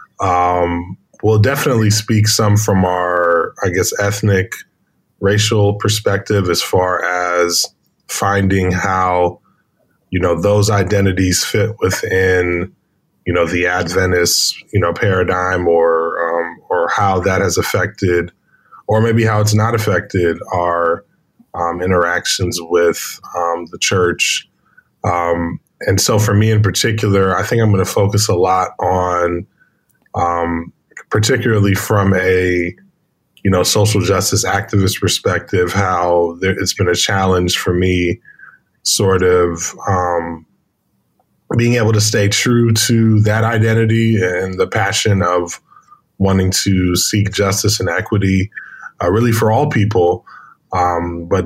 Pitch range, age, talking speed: 90-105 Hz, 20-39, 130 wpm